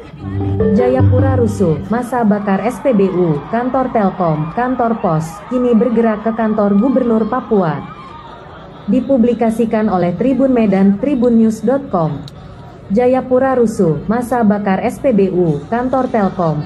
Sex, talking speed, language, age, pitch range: female, 100 wpm, Indonesian, 30-49, 190-245 Hz